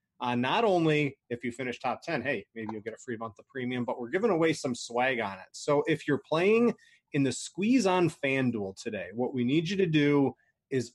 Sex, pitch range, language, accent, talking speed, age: male, 125-160 Hz, English, American, 235 wpm, 30-49